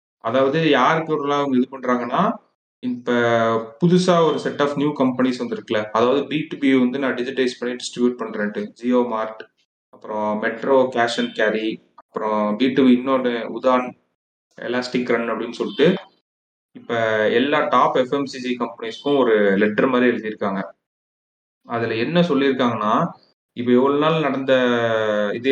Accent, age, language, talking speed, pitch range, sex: native, 30-49, Tamil, 125 wpm, 115-135 Hz, male